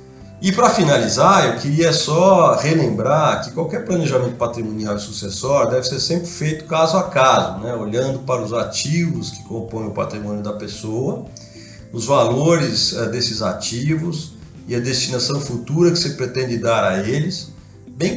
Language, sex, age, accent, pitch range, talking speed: Portuguese, male, 40-59, Brazilian, 115-155 Hz, 150 wpm